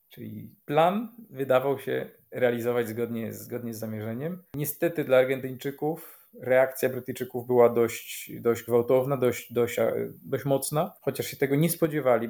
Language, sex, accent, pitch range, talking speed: Polish, male, native, 115-135 Hz, 125 wpm